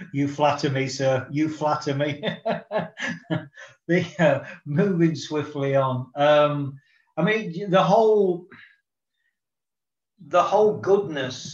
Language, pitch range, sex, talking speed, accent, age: English, 135-170 Hz, male, 100 wpm, British, 40-59